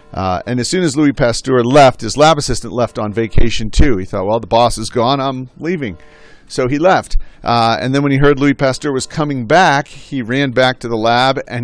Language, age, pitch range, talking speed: English, 50-69, 115-140 Hz, 230 wpm